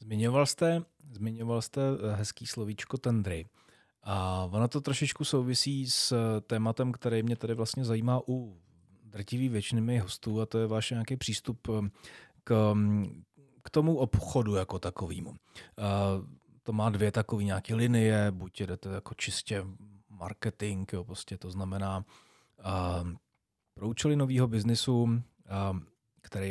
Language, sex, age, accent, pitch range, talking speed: Czech, male, 30-49, native, 95-115 Hz, 125 wpm